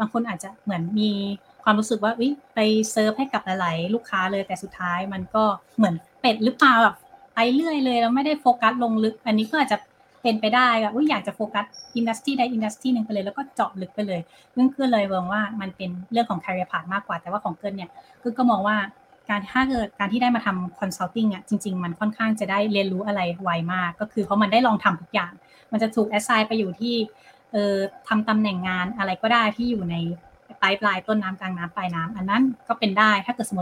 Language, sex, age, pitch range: Thai, female, 30-49, 195-235 Hz